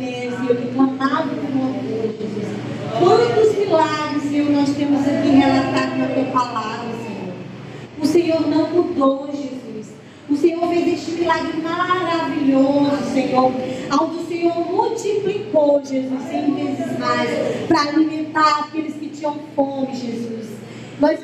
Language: Portuguese